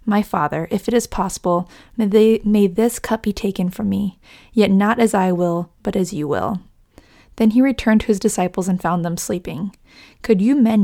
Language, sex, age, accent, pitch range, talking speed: English, female, 20-39, American, 185-220 Hz, 200 wpm